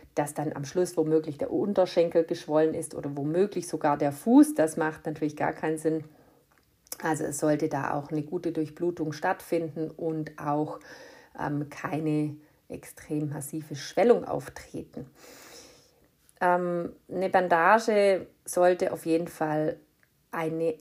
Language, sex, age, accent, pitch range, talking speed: German, female, 50-69, German, 150-170 Hz, 130 wpm